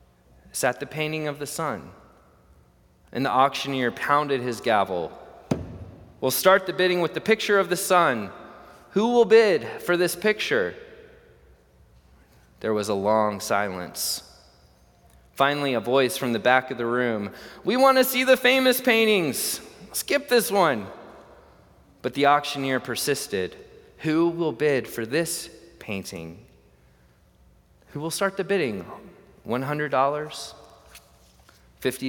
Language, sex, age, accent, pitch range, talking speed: English, male, 20-39, American, 95-155 Hz, 135 wpm